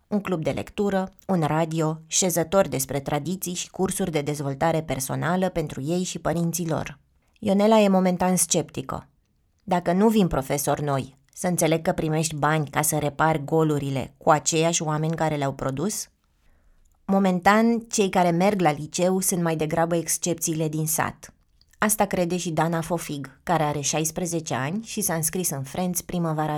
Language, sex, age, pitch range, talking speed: Romanian, female, 20-39, 150-180 Hz, 160 wpm